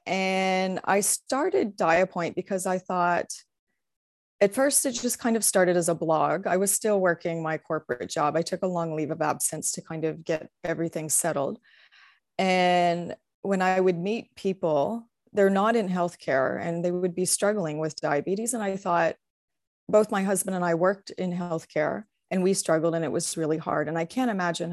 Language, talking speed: English, 185 wpm